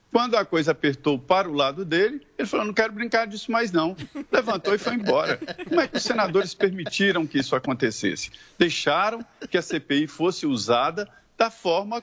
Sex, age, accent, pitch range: male, 50-69, Brazilian, 165-230 Hz